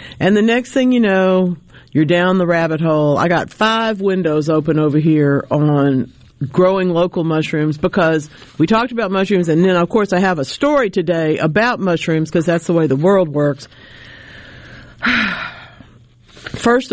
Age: 50-69